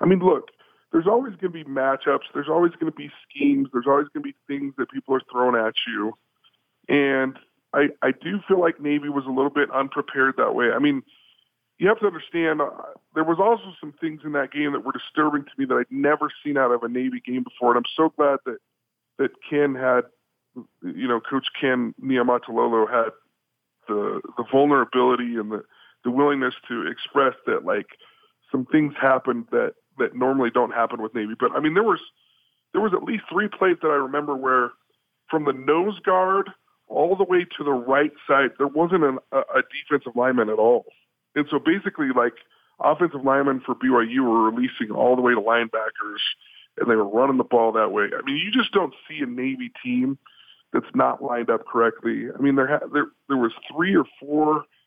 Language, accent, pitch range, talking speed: English, American, 130-175 Hz, 205 wpm